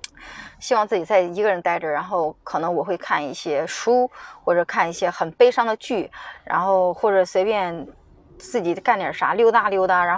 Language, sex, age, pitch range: Chinese, female, 20-39, 185-270 Hz